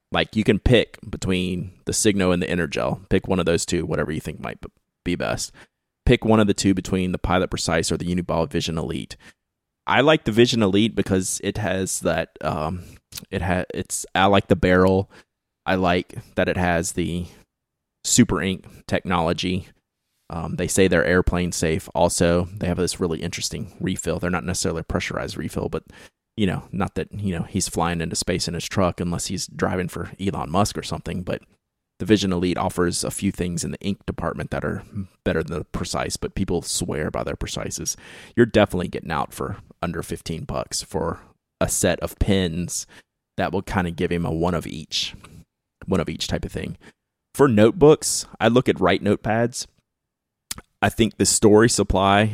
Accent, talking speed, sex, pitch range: American, 190 wpm, male, 85-100 Hz